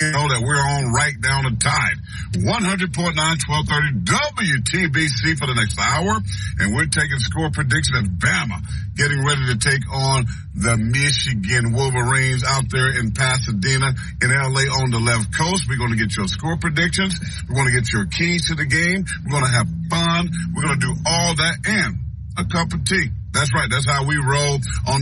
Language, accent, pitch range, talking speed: English, American, 100-135 Hz, 190 wpm